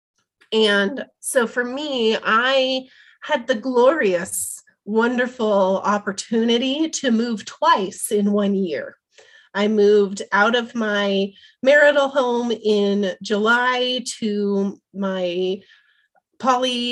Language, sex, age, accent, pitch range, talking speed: English, female, 30-49, American, 200-250 Hz, 100 wpm